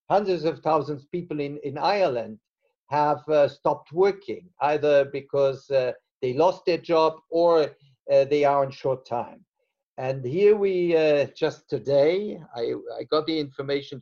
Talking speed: 160 wpm